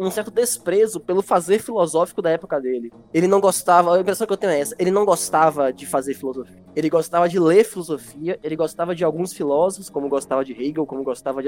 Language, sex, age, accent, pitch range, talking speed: Portuguese, male, 10-29, Brazilian, 155-210 Hz, 220 wpm